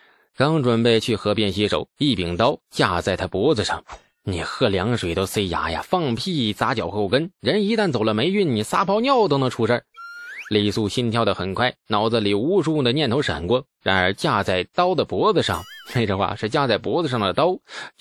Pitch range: 100-145 Hz